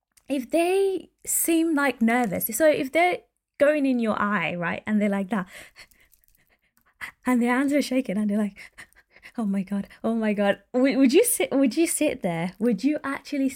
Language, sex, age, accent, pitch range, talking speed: English, female, 20-39, British, 190-275 Hz, 180 wpm